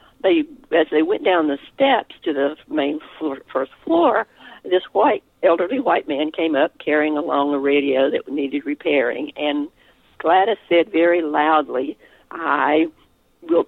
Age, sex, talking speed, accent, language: 60-79, female, 150 wpm, American, English